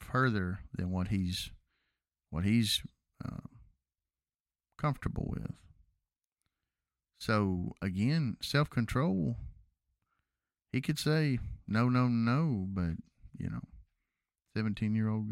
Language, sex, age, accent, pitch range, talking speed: English, male, 50-69, American, 80-110 Hz, 85 wpm